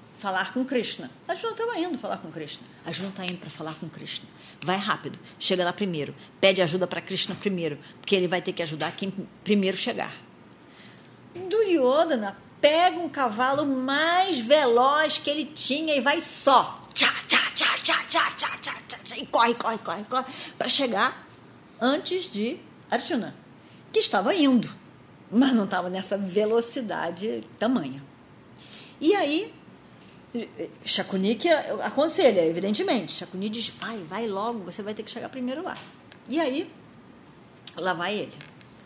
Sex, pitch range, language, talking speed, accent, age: female, 180-285 Hz, Portuguese, 140 wpm, Brazilian, 40-59